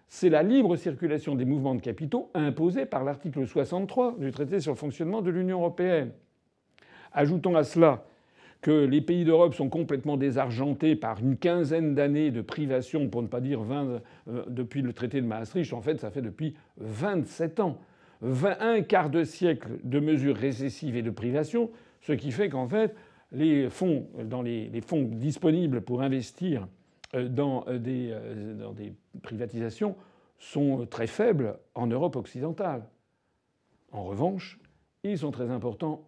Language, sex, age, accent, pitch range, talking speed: French, male, 50-69, French, 130-175 Hz, 160 wpm